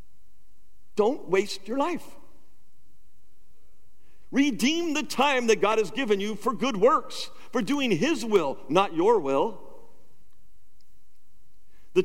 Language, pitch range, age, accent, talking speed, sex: English, 155-230 Hz, 50-69, American, 115 wpm, male